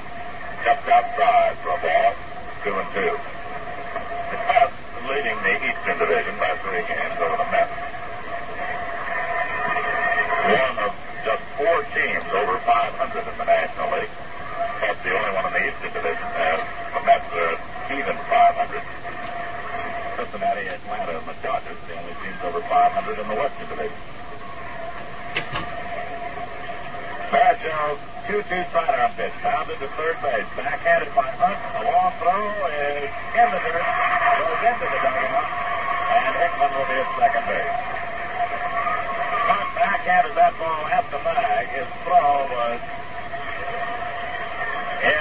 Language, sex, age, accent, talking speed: English, male, 50-69, American, 135 wpm